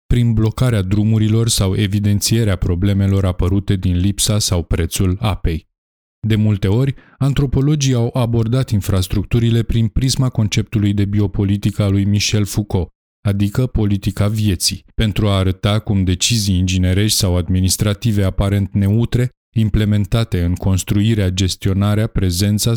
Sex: male